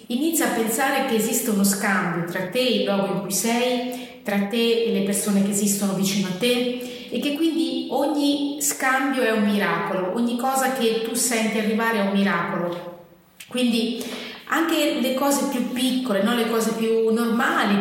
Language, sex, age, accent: Italian, female, 30-49, native